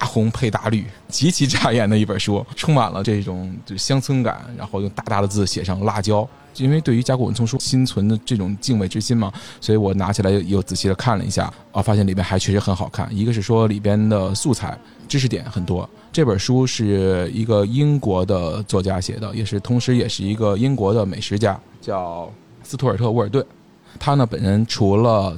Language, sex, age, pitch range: Chinese, male, 20-39, 100-125 Hz